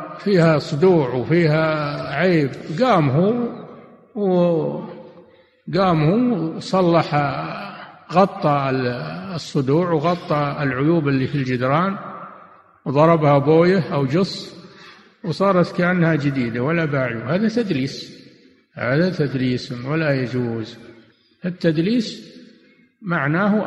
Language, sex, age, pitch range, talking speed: Arabic, male, 60-79, 140-175 Hz, 85 wpm